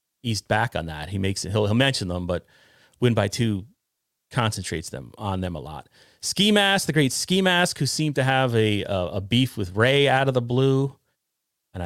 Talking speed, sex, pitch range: 210 wpm, male, 105-150 Hz